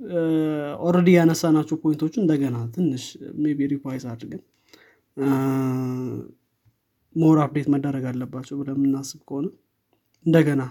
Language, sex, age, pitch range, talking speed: Amharic, male, 20-39, 130-165 Hz, 95 wpm